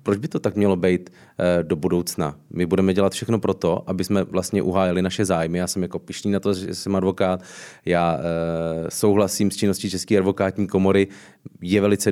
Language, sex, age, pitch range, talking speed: Czech, male, 30-49, 90-100 Hz, 185 wpm